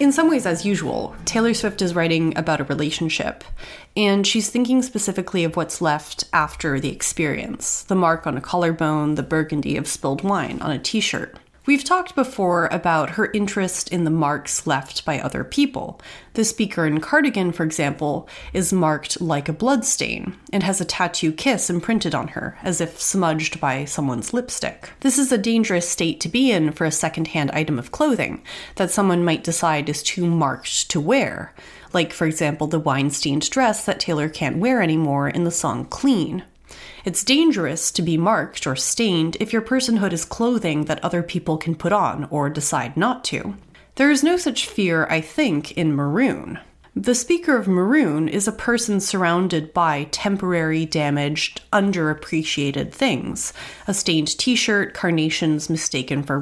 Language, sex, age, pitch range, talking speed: English, female, 30-49, 155-215 Hz, 170 wpm